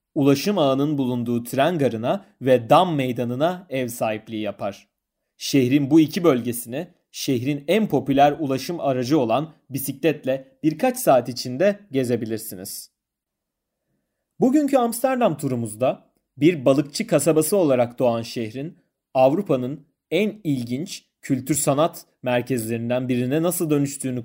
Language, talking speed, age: Turkish, 110 wpm, 30-49